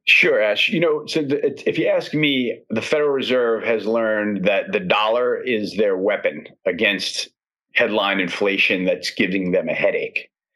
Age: 40-59